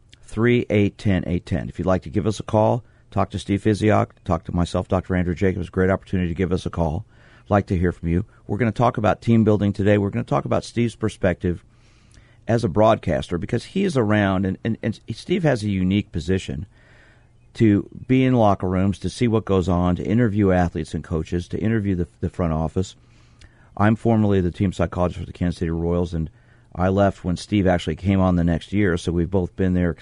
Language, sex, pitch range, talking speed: English, male, 90-115 Hz, 230 wpm